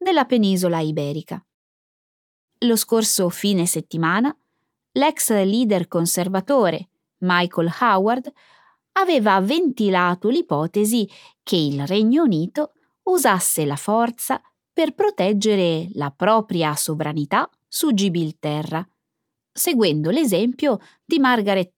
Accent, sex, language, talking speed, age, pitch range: native, female, Italian, 90 wpm, 20-39, 170-255 Hz